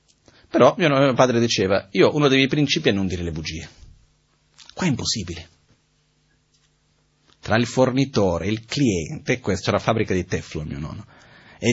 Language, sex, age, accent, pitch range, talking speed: Italian, male, 30-49, native, 105-145 Hz, 175 wpm